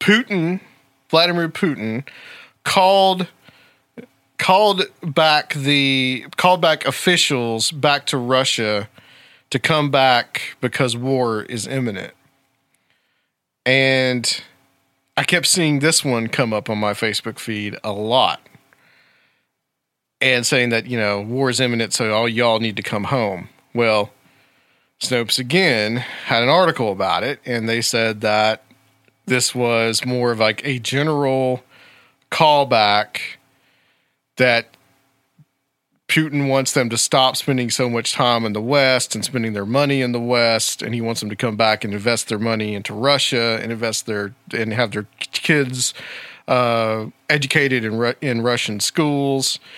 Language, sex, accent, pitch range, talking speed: English, male, American, 115-135 Hz, 140 wpm